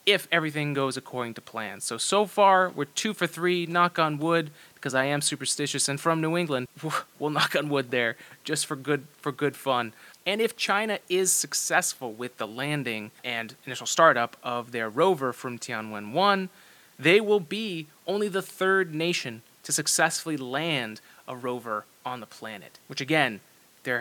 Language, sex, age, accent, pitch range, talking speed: English, male, 30-49, American, 125-160 Hz, 170 wpm